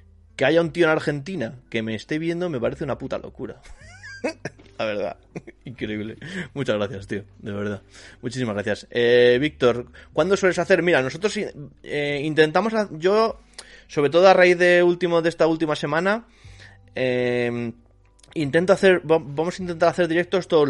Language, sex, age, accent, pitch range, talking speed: Spanish, male, 20-39, Spanish, 115-165 Hz, 155 wpm